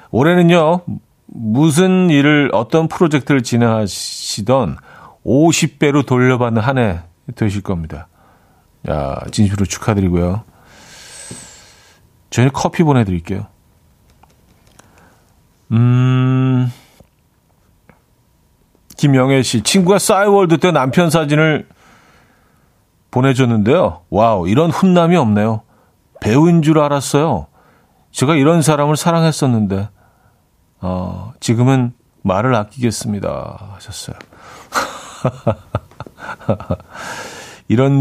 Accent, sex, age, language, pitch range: native, male, 40-59, Korean, 100-150 Hz